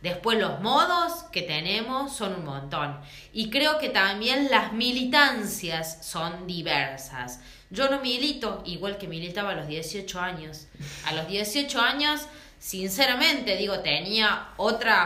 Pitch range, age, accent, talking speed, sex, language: 165-230 Hz, 20-39, Argentinian, 135 wpm, female, Spanish